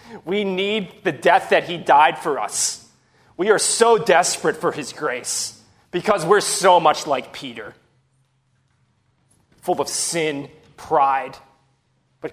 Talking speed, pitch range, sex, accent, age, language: 130 wpm, 135-205 Hz, male, American, 30-49, English